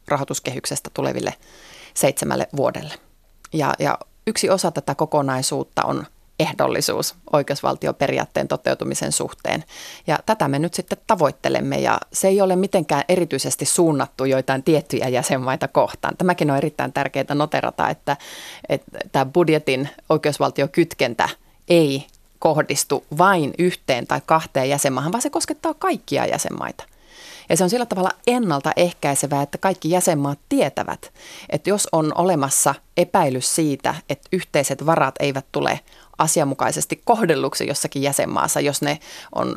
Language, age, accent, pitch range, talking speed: Finnish, 30-49, native, 145-185 Hz, 125 wpm